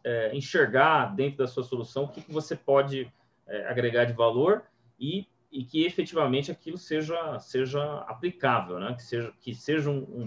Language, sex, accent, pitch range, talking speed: Portuguese, male, Brazilian, 120-155 Hz, 175 wpm